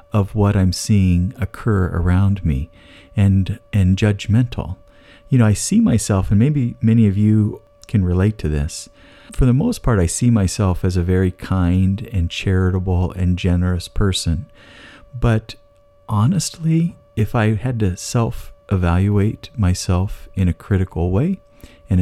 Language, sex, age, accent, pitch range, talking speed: English, male, 50-69, American, 90-115 Hz, 145 wpm